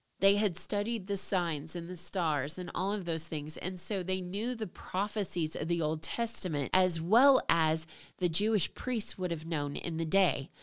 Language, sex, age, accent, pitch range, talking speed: English, female, 30-49, American, 165-200 Hz, 200 wpm